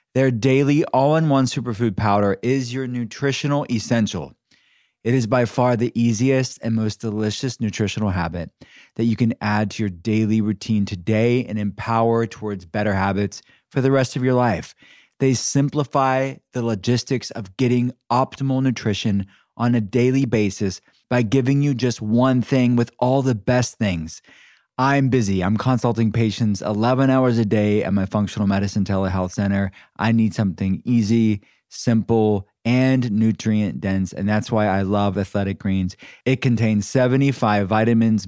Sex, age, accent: male, 20-39, American